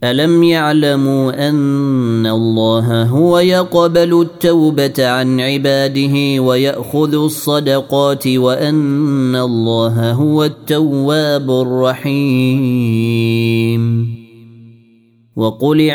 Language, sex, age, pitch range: Arabic, male, 30-49, 115-140 Hz